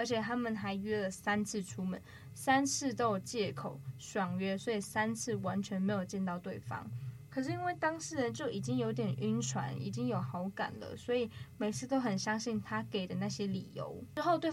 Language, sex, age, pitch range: Chinese, female, 10-29, 185-235 Hz